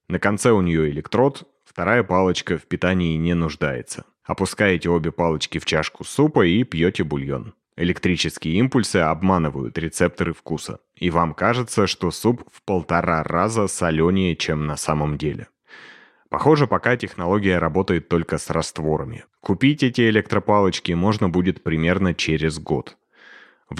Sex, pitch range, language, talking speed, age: male, 80-100 Hz, Russian, 135 wpm, 30-49